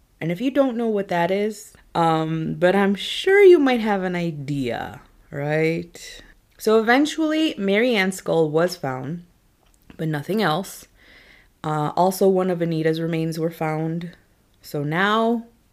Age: 20-39